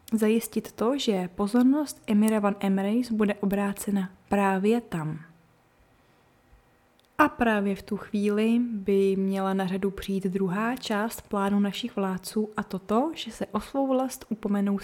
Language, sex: Czech, female